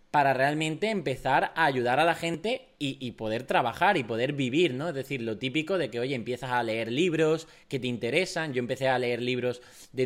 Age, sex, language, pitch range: 20-39, male, Spanish, 125-165 Hz